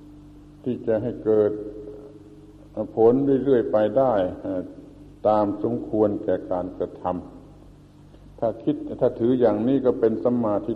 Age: 70-89